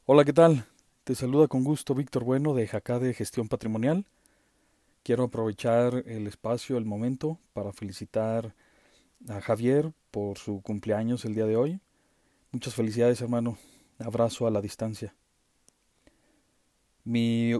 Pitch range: 110-135 Hz